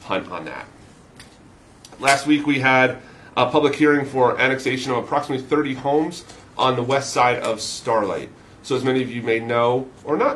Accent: American